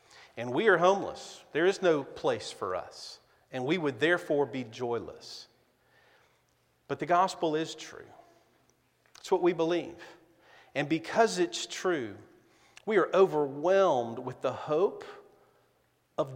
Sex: male